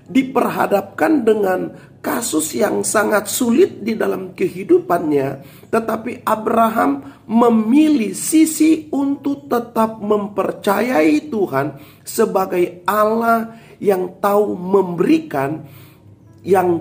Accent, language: native, Indonesian